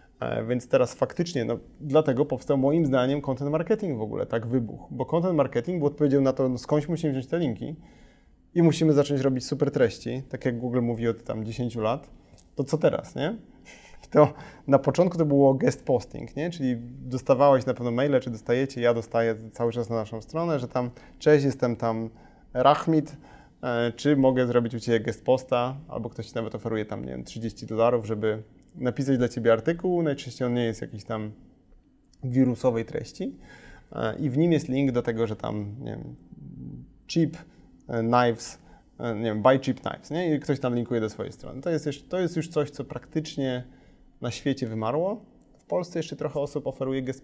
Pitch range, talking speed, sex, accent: 115-145 Hz, 185 wpm, male, native